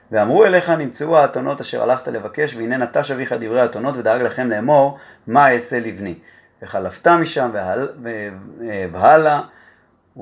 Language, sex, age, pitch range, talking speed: Hebrew, male, 30-49, 105-135 Hz, 125 wpm